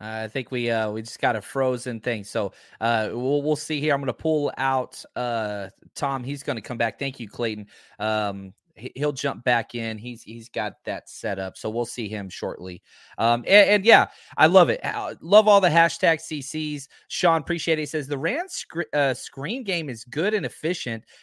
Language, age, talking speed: English, 30-49, 220 wpm